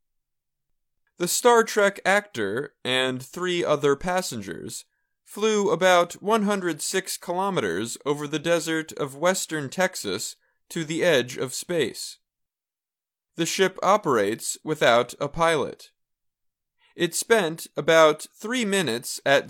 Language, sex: Chinese, male